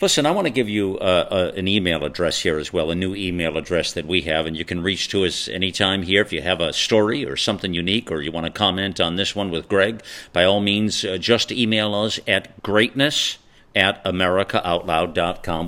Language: English